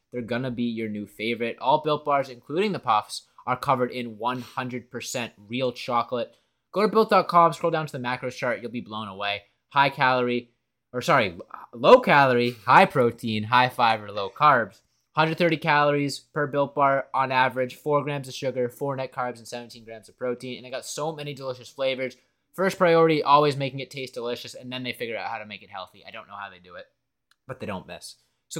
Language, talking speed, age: English, 210 wpm, 20-39